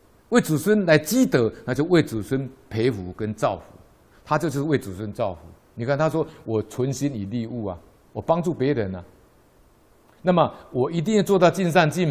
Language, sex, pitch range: Chinese, male, 115-180 Hz